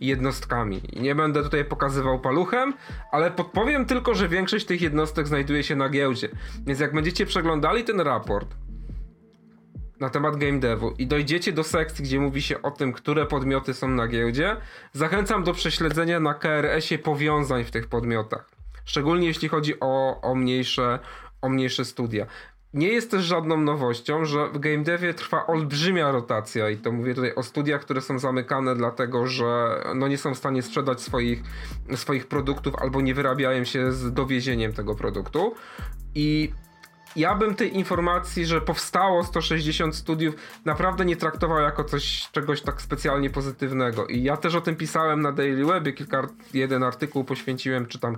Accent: native